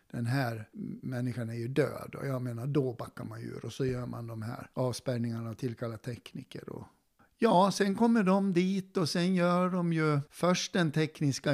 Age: 60-79